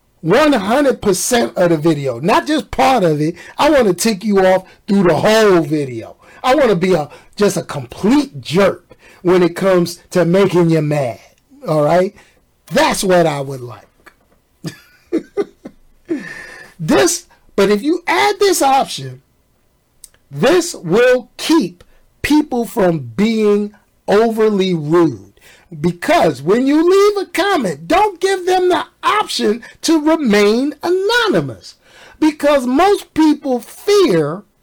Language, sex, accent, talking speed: English, male, American, 130 wpm